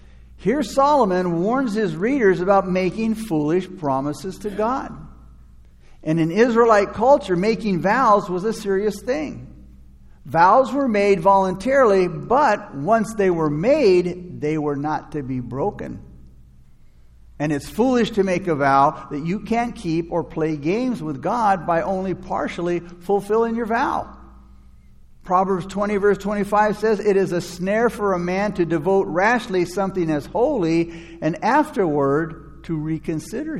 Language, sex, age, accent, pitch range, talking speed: English, male, 50-69, American, 145-205 Hz, 145 wpm